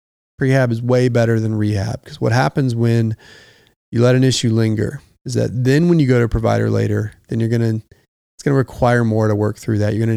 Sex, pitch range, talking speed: male, 110-120 Hz, 235 wpm